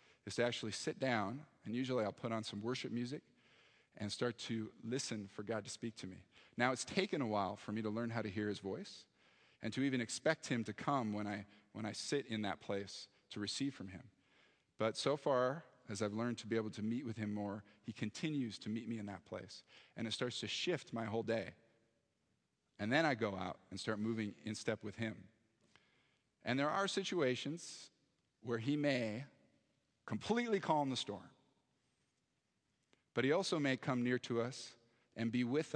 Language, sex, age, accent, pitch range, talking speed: English, male, 40-59, American, 105-125 Hz, 200 wpm